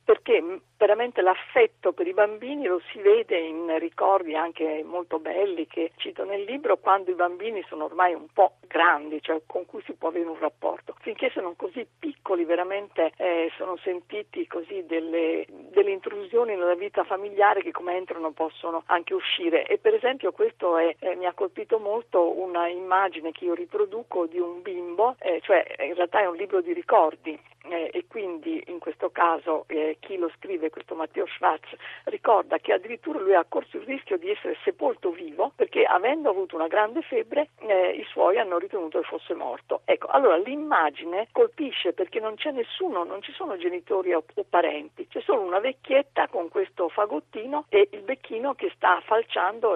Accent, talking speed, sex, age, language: native, 180 wpm, female, 50-69, Italian